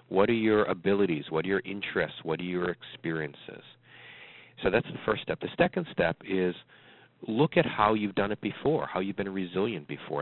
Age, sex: 40-59, male